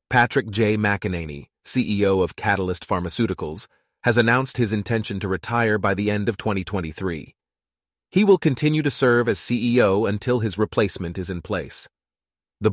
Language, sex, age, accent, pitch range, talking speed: English, male, 30-49, American, 90-120 Hz, 150 wpm